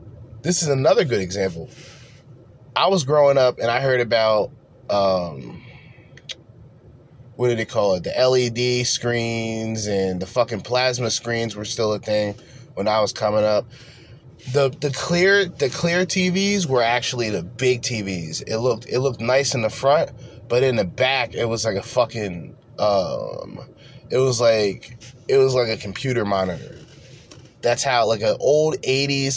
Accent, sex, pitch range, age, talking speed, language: American, male, 110-130 Hz, 20-39, 165 wpm, English